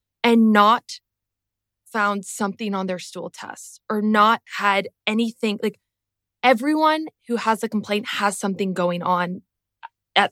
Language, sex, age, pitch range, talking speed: English, female, 20-39, 185-220 Hz, 135 wpm